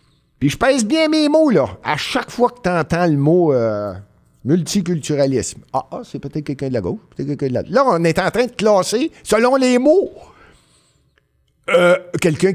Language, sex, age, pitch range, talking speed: French, male, 50-69, 125-180 Hz, 195 wpm